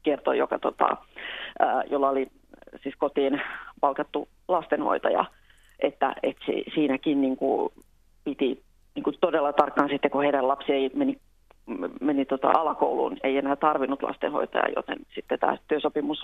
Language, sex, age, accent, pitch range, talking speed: Finnish, female, 30-49, native, 135-150 Hz, 130 wpm